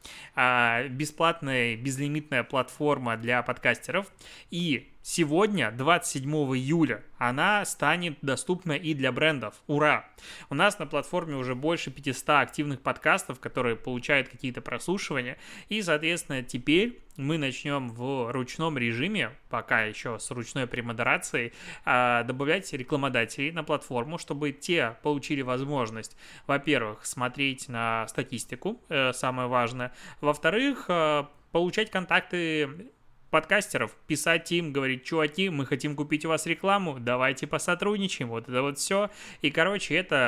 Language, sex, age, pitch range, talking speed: Russian, male, 20-39, 125-160 Hz, 120 wpm